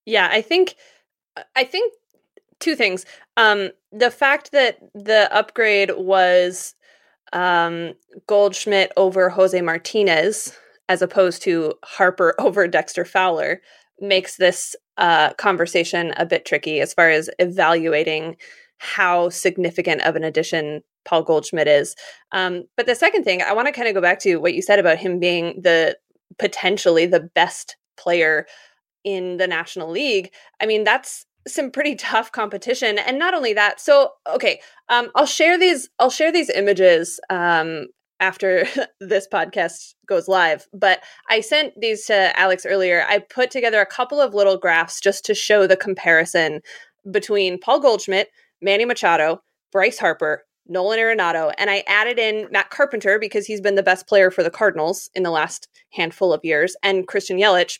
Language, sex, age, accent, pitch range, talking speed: English, female, 20-39, American, 175-225 Hz, 155 wpm